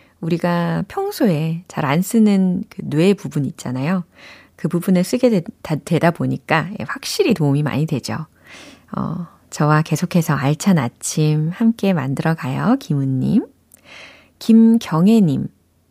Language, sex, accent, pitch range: Korean, female, native, 150-225 Hz